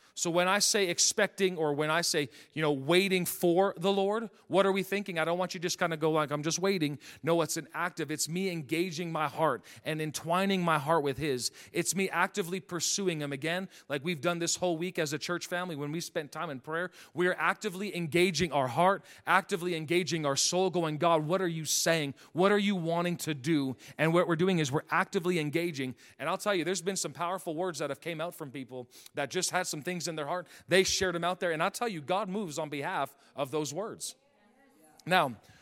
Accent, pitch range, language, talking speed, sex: American, 155-185 Hz, English, 235 wpm, male